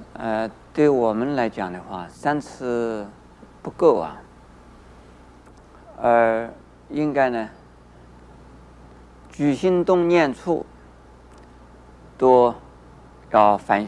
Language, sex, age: Chinese, male, 50-69